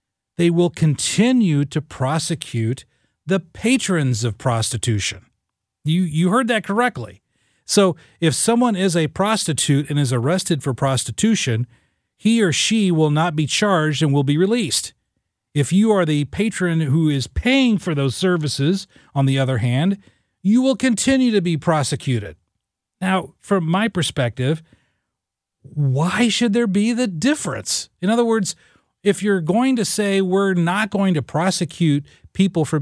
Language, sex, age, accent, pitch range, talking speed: English, male, 40-59, American, 135-195 Hz, 150 wpm